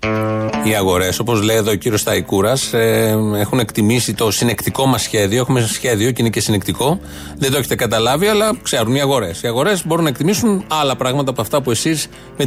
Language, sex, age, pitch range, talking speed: Greek, male, 30-49, 125-160 Hz, 200 wpm